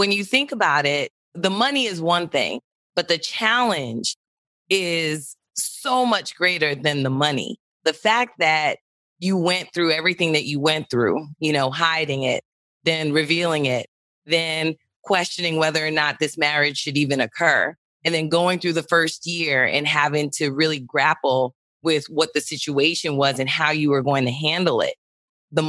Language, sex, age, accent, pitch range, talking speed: English, female, 30-49, American, 150-190 Hz, 175 wpm